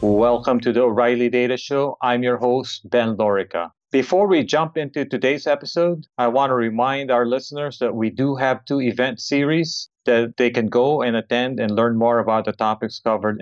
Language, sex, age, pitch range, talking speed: English, male, 40-59, 120-155 Hz, 190 wpm